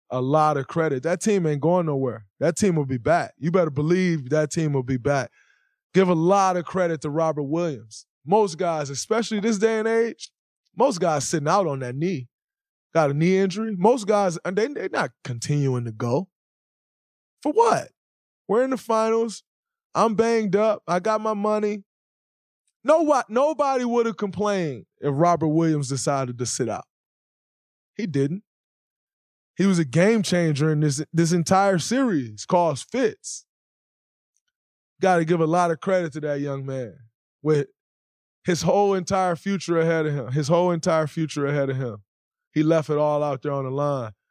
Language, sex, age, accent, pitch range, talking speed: English, male, 20-39, American, 140-195 Hz, 175 wpm